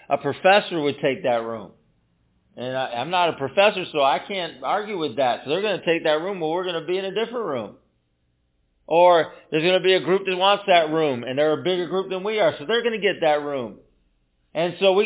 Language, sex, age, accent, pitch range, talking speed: English, male, 40-59, American, 135-195 Hz, 255 wpm